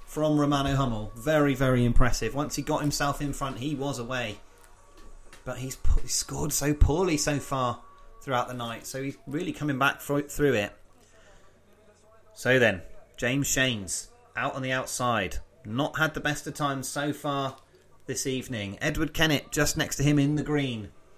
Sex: male